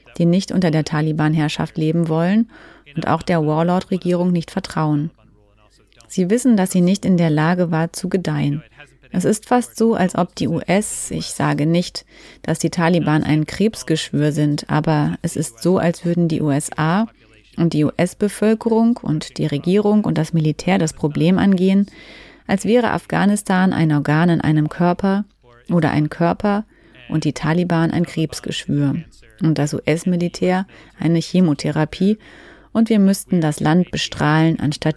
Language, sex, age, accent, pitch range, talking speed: German, female, 30-49, German, 150-185 Hz, 155 wpm